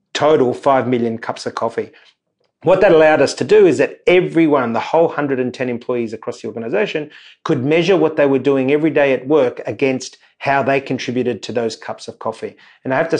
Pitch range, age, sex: 120-150 Hz, 30-49, male